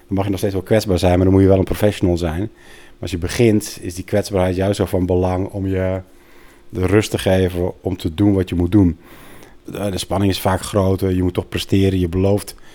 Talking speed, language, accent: 245 wpm, Dutch, Dutch